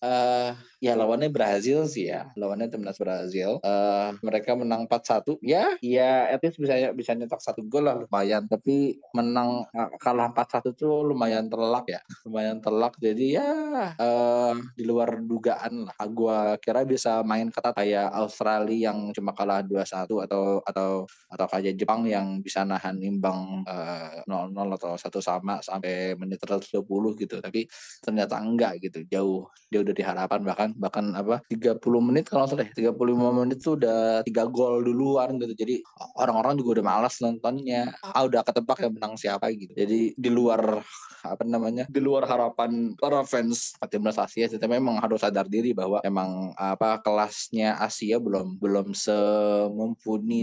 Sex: male